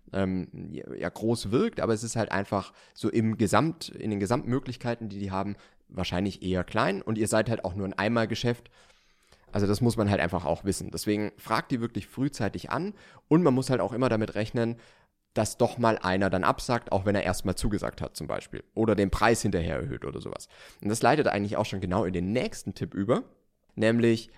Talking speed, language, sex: 210 wpm, German, male